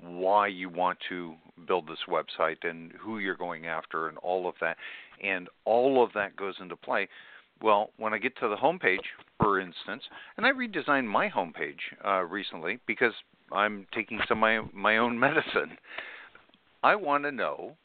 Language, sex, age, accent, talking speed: English, male, 50-69, American, 180 wpm